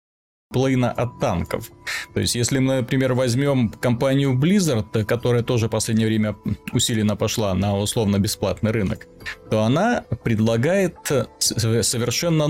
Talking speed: 120 wpm